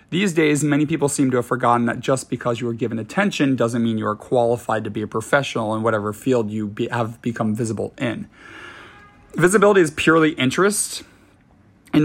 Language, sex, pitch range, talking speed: English, male, 120-140 Hz, 190 wpm